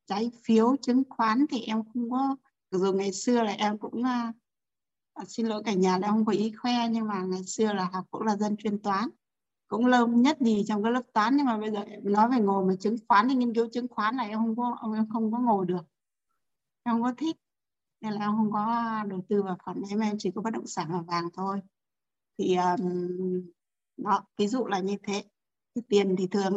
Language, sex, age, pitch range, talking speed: Vietnamese, female, 20-39, 195-235 Hz, 230 wpm